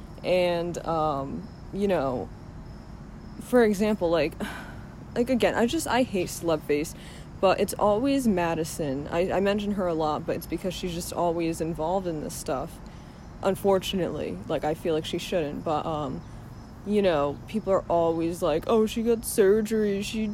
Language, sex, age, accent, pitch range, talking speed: English, female, 20-39, American, 160-205 Hz, 160 wpm